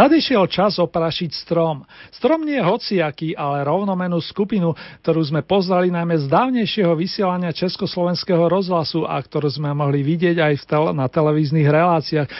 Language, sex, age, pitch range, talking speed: Slovak, male, 40-59, 155-190 Hz, 140 wpm